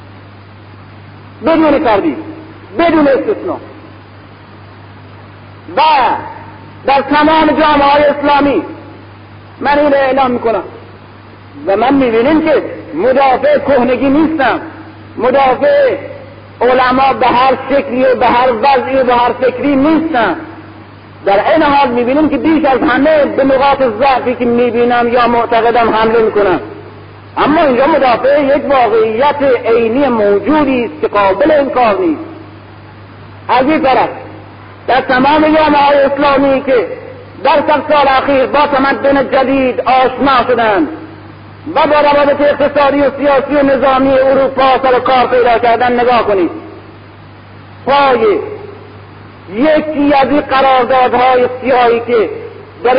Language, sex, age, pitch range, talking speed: Persian, male, 50-69, 235-290 Hz, 115 wpm